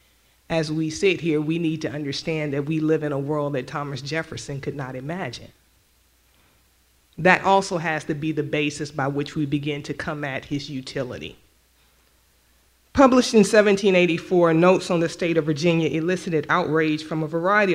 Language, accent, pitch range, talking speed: English, American, 145-170 Hz, 170 wpm